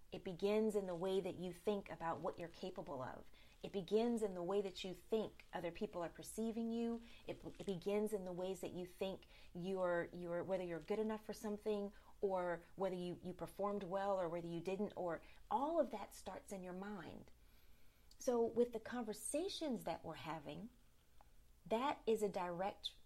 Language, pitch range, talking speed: English, 170-210 Hz, 185 wpm